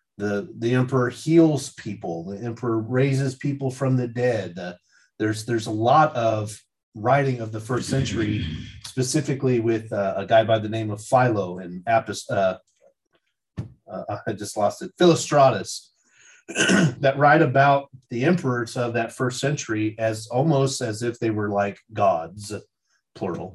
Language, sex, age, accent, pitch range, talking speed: English, male, 30-49, American, 105-130 Hz, 145 wpm